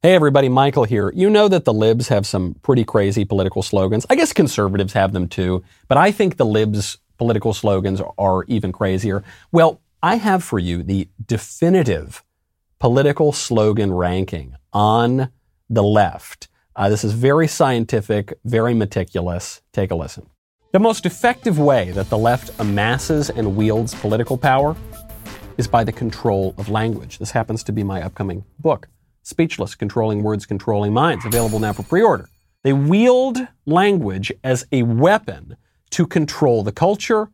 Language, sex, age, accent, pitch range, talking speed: English, male, 40-59, American, 100-135 Hz, 160 wpm